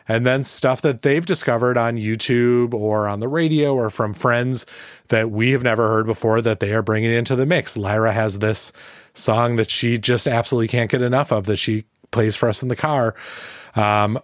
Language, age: English, 30-49